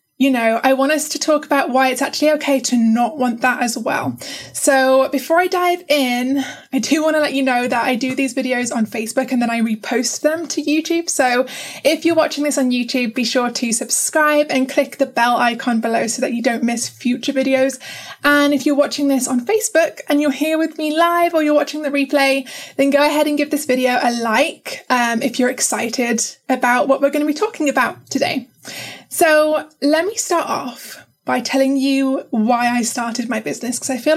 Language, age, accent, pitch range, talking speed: English, 20-39, British, 240-295 Hz, 220 wpm